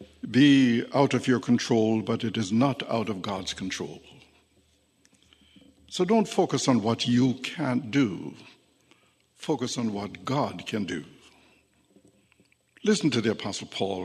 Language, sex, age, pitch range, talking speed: English, male, 60-79, 105-140 Hz, 135 wpm